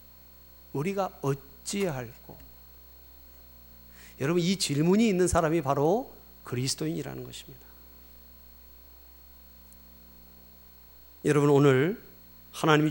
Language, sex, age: Korean, male, 40-59